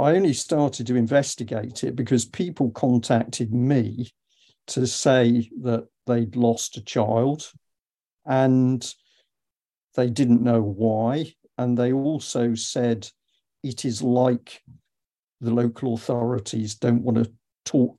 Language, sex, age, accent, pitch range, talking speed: English, male, 50-69, British, 115-125 Hz, 120 wpm